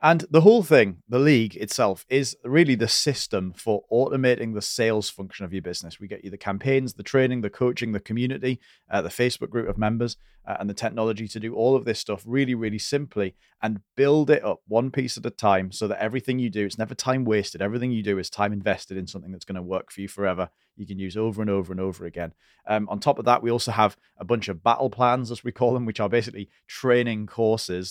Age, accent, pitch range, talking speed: 30-49, British, 100-120 Hz, 245 wpm